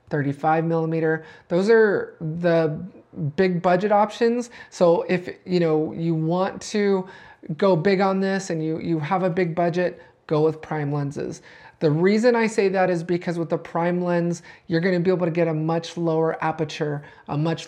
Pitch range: 155-180 Hz